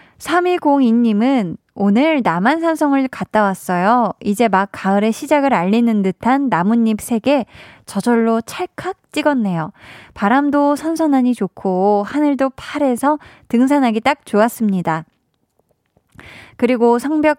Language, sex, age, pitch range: Korean, female, 20-39, 200-275 Hz